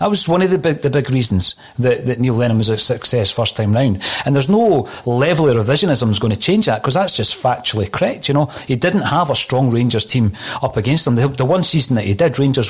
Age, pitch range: 40-59, 125-165 Hz